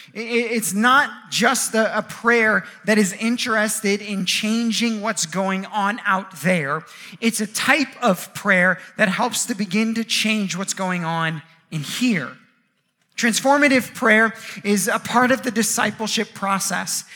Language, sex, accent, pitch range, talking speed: English, male, American, 195-235 Hz, 140 wpm